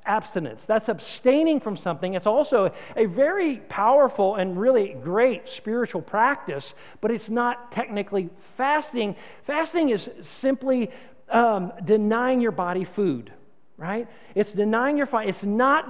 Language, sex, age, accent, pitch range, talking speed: English, male, 50-69, American, 195-245 Hz, 130 wpm